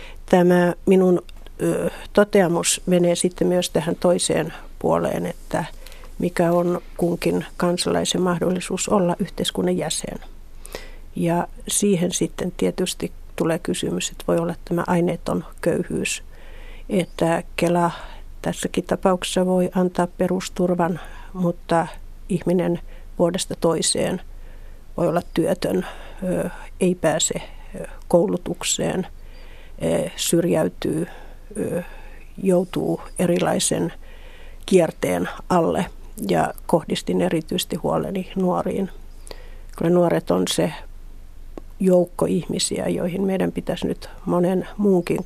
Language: Finnish